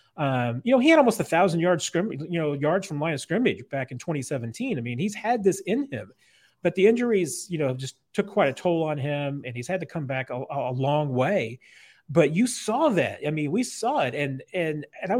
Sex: male